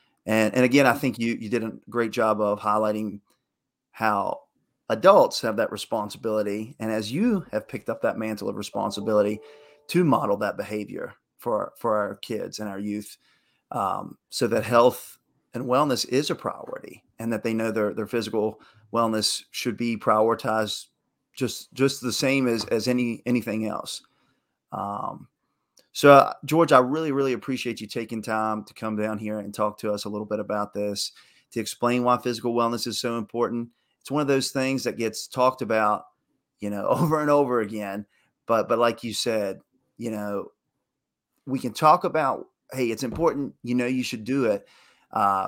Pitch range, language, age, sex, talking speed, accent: 105-125 Hz, English, 30-49, male, 180 wpm, American